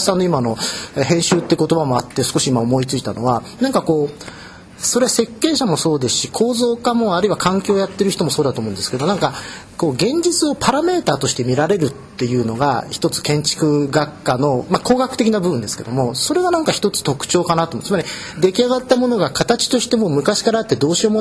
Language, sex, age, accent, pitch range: Japanese, male, 40-59, native, 150-230 Hz